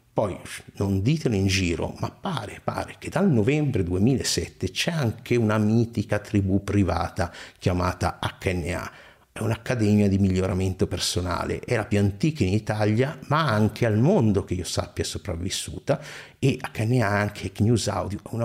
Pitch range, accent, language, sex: 100-135 Hz, native, Italian, male